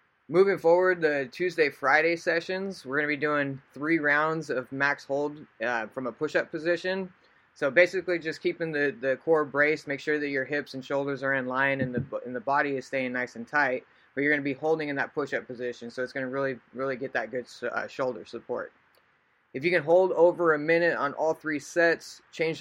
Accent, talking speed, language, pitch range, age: American, 220 wpm, English, 135-160 Hz, 20-39